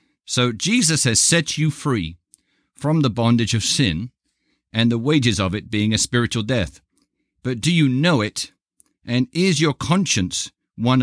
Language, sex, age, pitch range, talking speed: English, male, 50-69, 115-150 Hz, 165 wpm